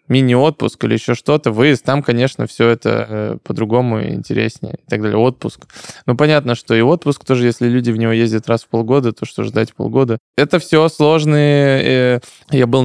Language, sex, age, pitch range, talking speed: Russian, male, 20-39, 115-135 Hz, 175 wpm